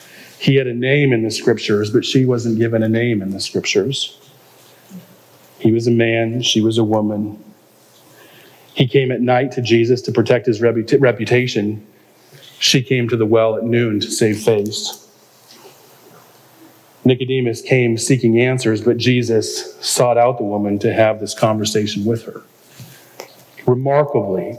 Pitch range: 115-155 Hz